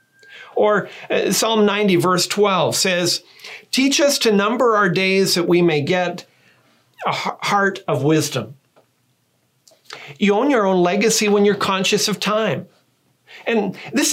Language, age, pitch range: English, 40-59, 175-220 Hz